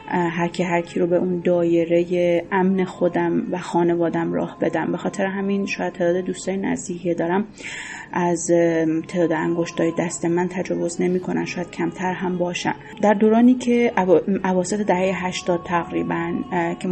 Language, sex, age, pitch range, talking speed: Persian, female, 30-49, 175-195 Hz, 155 wpm